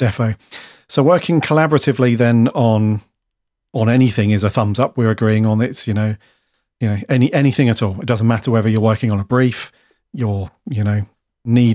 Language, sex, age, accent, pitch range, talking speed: English, male, 40-59, British, 110-130 Hz, 190 wpm